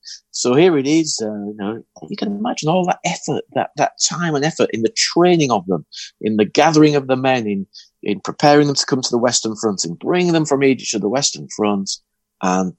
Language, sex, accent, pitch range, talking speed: English, male, British, 110-175 Hz, 230 wpm